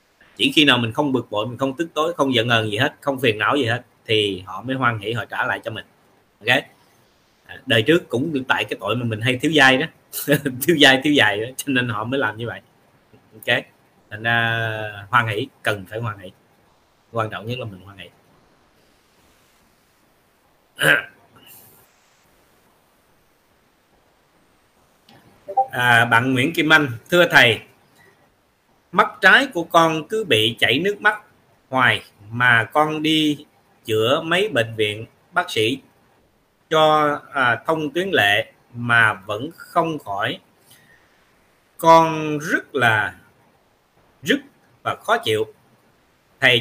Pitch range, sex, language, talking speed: 115-155 Hz, male, Vietnamese, 150 wpm